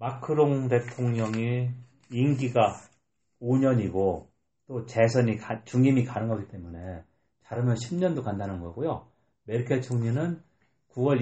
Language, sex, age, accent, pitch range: Korean, male, 40-59, native, 100-125 Hz